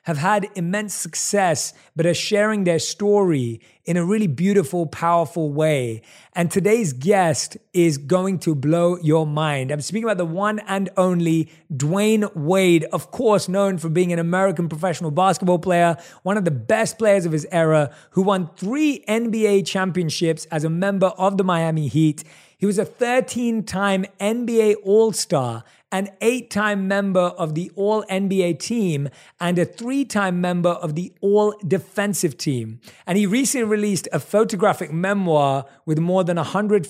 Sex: male